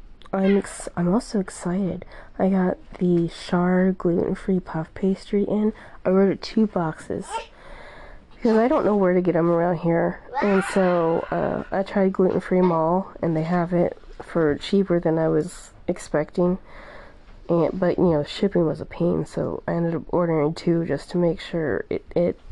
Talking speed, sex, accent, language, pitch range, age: 170 wpm, female, American, English, 165-205 Hz, 20-39